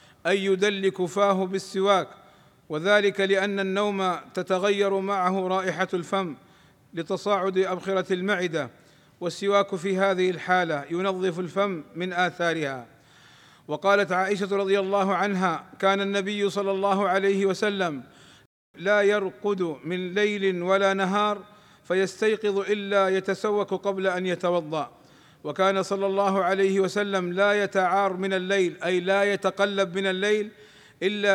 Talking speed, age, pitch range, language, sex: 115 wpm, 50-69, 180-200 Hz, Arabic, male